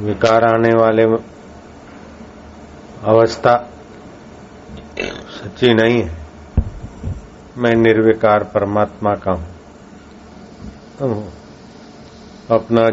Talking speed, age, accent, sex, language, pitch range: 60 wpm, 50-69, native, male, Hindi, 95-110 Hz